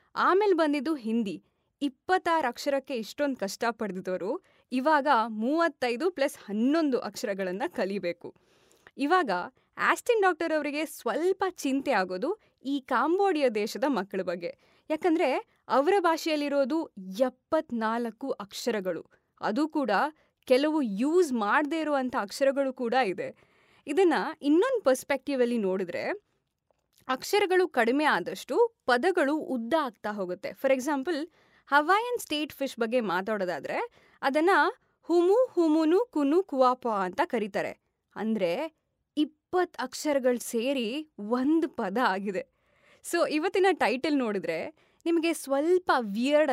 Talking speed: 100 wpm